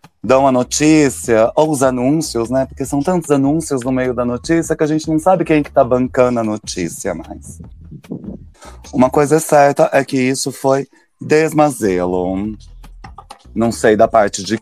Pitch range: 115-160 Hz